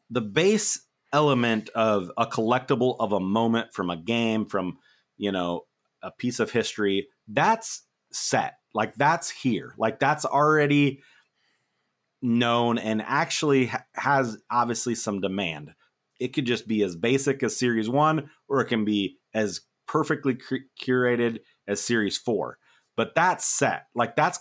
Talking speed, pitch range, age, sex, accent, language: 145 wpm, 110-145 Hz, 30-49, male, American, English